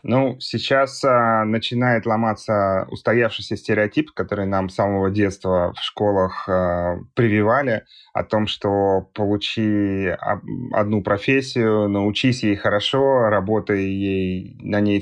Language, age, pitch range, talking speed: Russian, 30-49, 100-120 Hz, 115 wpm